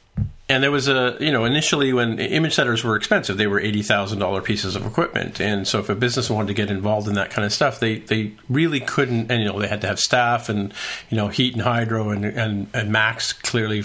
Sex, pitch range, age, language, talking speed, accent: male, 105-125 Hz, 50-69, English, 240 wpm, American